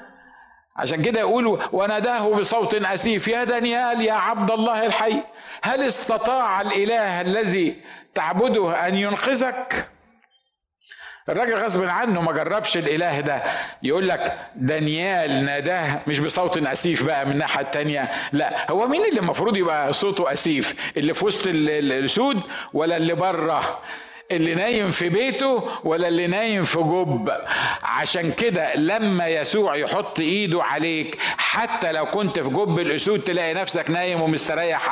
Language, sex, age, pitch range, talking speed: Arabic, male, 50-69, 150-215 Hz, 135 wpm